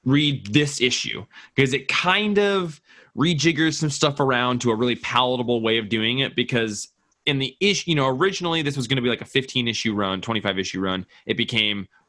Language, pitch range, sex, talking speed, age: English, 105-130 Hz, male, 205 wpm, 20-39